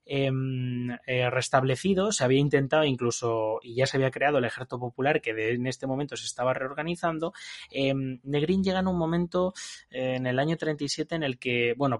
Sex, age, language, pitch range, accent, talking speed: male, 20-39, Spanish, 120-150 Hz, Spanish, 180 wpm